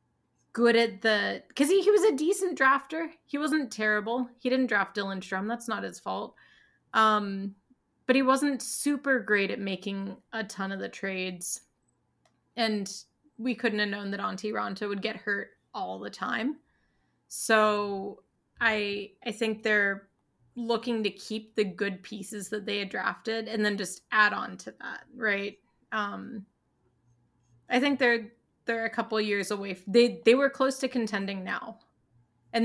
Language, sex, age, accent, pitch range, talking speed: English, female, 20-39, American, 200-235 Hz, 160 wpm